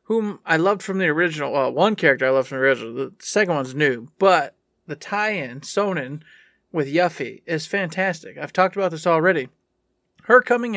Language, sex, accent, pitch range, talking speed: English, male, American, 145-190 Hz, 185 wpm